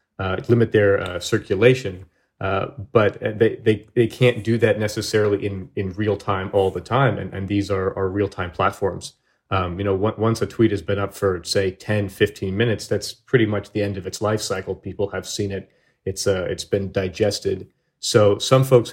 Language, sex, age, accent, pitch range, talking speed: English, male, 30-49, American, 95-110 Hz, 205 wpm